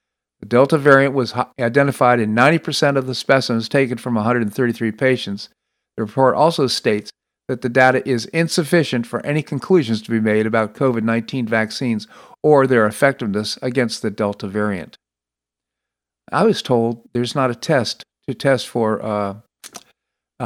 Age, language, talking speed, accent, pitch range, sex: 50-69, English, 150 wpm, American, 110-135 Hz, male